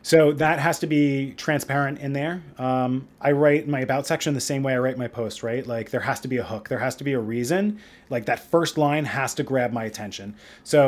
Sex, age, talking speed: male, 30-49, 250 wpm